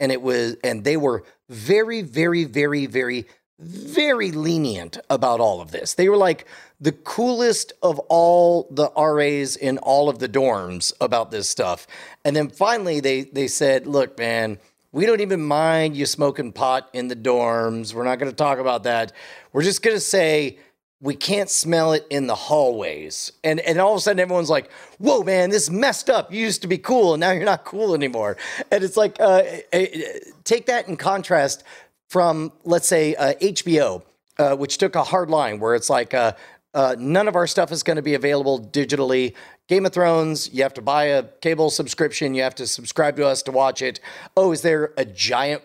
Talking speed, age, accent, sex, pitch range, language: 200 wpm, 30-49, American, male, 130-175 Hz, English